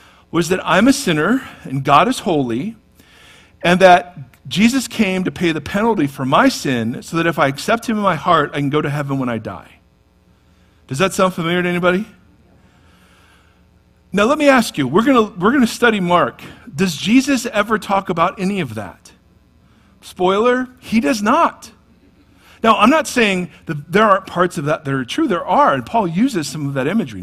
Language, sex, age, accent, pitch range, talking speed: English, male, 50-69, American, 145-225 Hz, 195 wpm